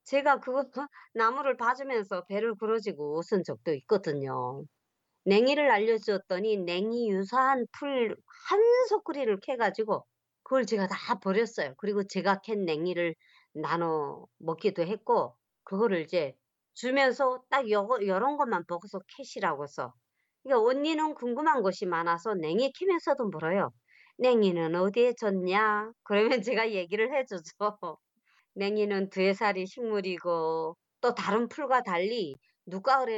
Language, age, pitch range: Korean, 40-59, 175-240 Hz